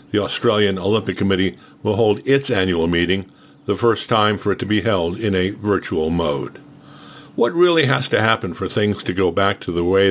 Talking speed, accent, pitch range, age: 200 wpm, American, 100-125 Hz, 60-79